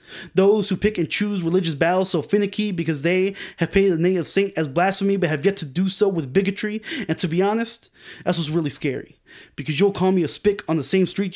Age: 20-39